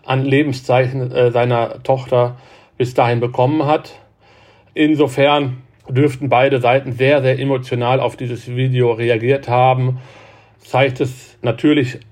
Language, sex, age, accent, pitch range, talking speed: German, male, 40-59, German, 115-130 Hz, 120 wpm